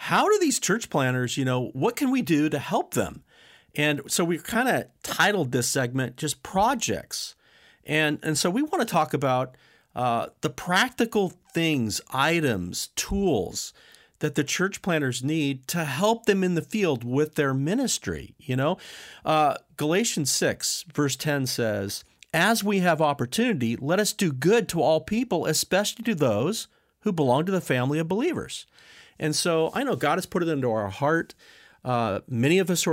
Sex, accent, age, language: male, American, 40-59, English